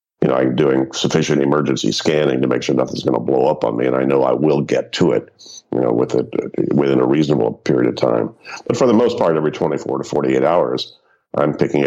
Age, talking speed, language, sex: 50-69, 240 wpm, English, male